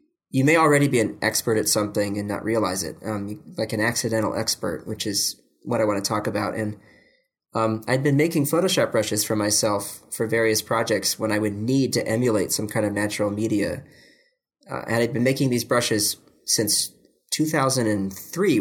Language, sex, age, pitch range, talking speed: English, male, 20-39, 105-120 Hz, 185 wpm